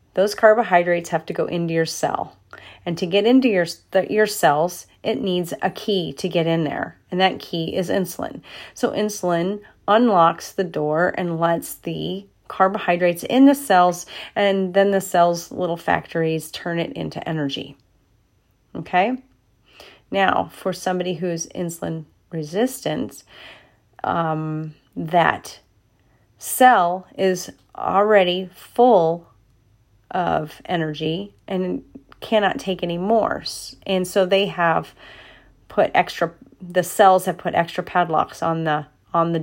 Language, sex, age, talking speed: English, female, 30-49, 135 wpm